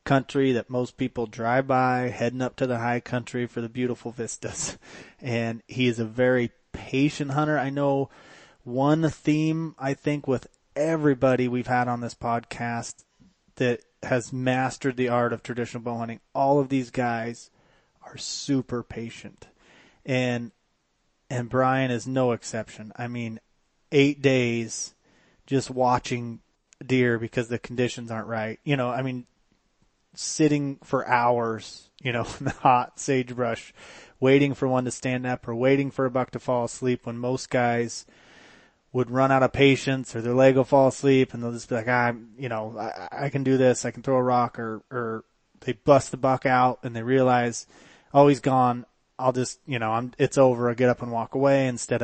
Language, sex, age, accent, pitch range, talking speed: English, male, 30-49, American, 120-135 Hz, 180 wpm